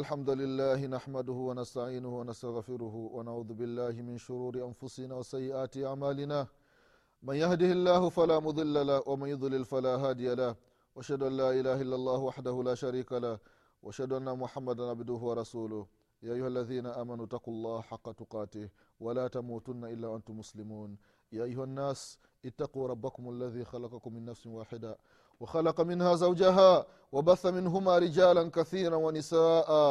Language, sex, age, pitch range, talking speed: Swahili, male, 30-49, 115-145 Hz, 130 wpm